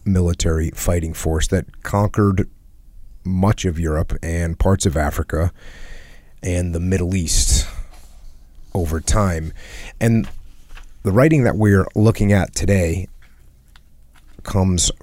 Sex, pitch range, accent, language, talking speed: male, 80-105 Hz, American, English, 110 wpm